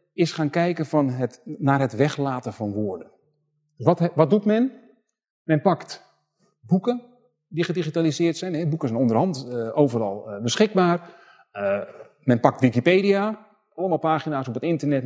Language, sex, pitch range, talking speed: Dutch, male, 130-185 Hz, 135 wpm